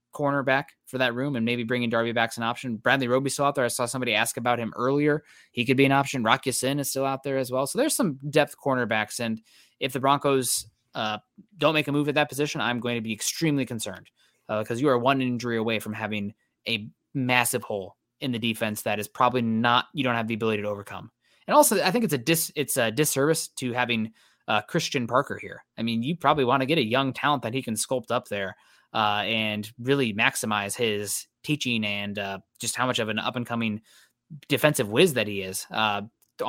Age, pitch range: 20-39, 115-140 Hz